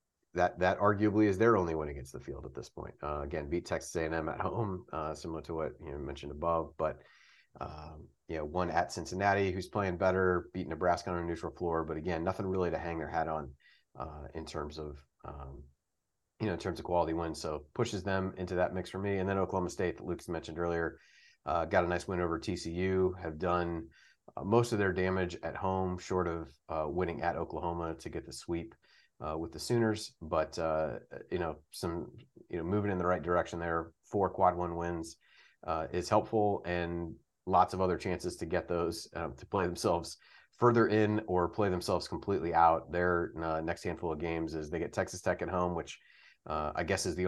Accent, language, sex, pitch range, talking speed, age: American, English, male, 80-95 Hz, 215 wpm, 30-49